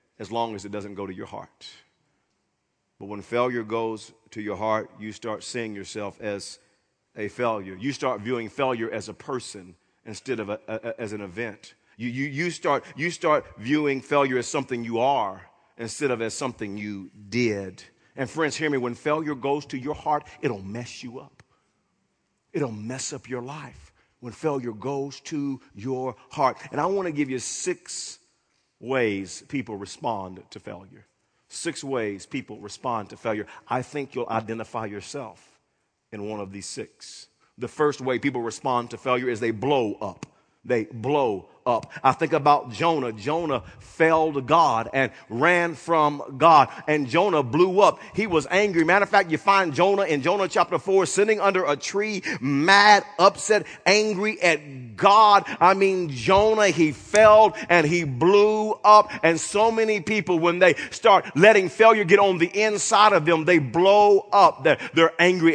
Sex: male